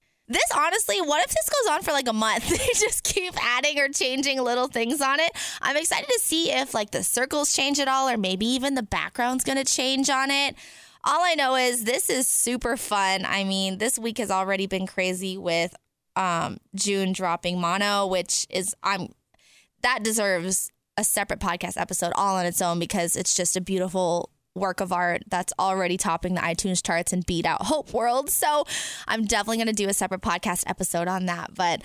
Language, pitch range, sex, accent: English, 185-255 Hz, female, American